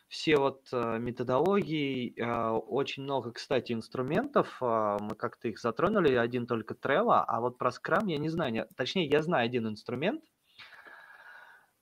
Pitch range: 115-140 Hz